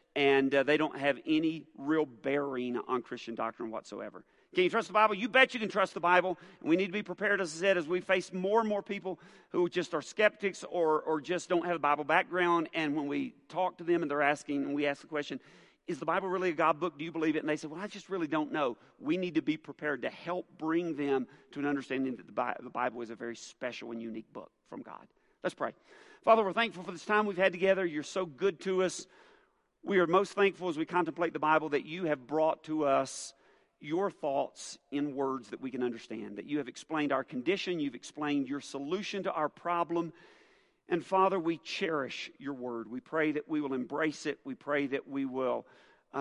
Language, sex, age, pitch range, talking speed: English, male, 40-59, 140-190 Hz, 235 wpm